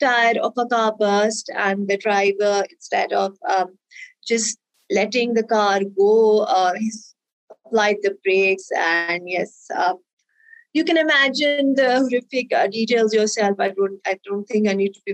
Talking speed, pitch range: 160 wpm, 200-235 Hz